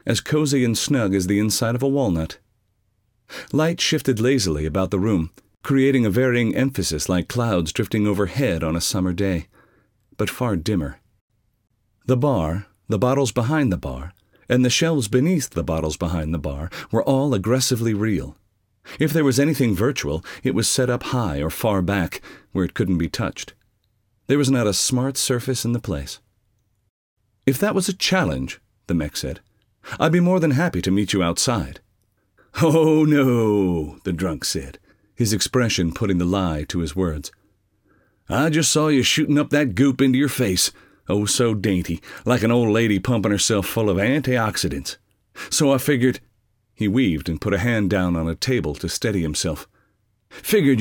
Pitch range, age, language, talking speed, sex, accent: 95-130 Hz, 40-59, English, 175 wpm, male, American